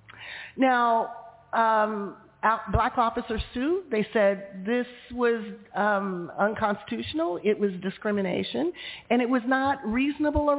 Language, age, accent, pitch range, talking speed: English, 40-59, American, 195-260 Hz, 115 wpm